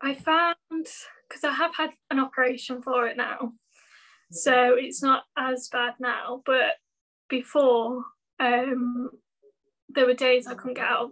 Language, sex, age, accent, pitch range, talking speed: English, female, 10-29, British, 245-275 Hz, 150 wpm